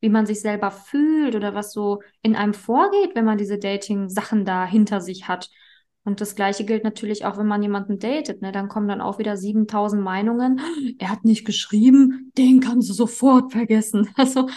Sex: female